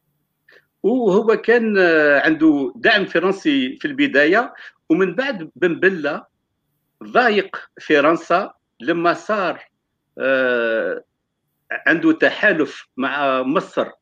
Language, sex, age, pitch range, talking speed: Arabic, male, 60-79, 185-270 Hz, 75 wpm